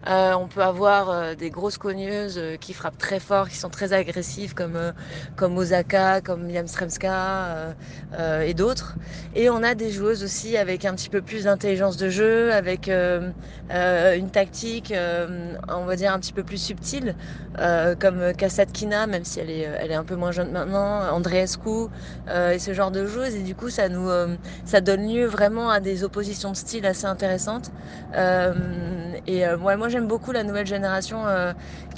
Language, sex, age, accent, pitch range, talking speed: French, female, 30-49, French, 170-200 Hz, 195 wpm